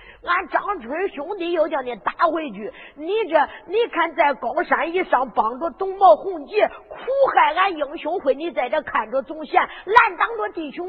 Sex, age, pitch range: female, 50-69, 280-365 Hz